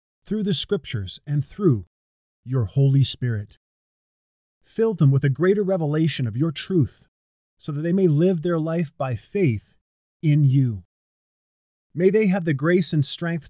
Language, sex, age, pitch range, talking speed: English, male, 30-49, 120-175 Hz, 155 wpm